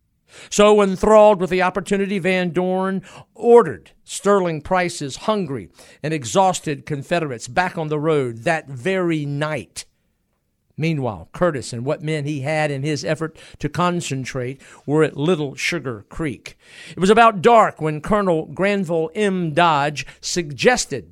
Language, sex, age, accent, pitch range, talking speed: English, male, 50-69, American, 140-185 Hz, 135 wpm